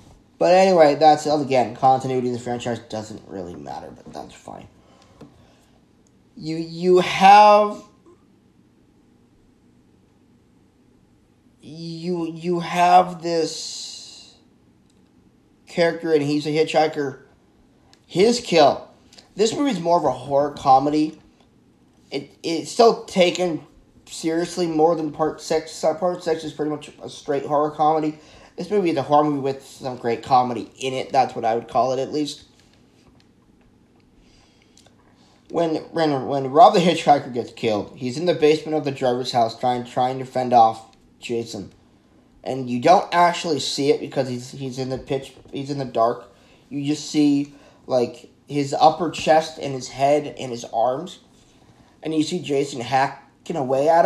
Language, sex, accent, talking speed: English, male, American, 145 wpm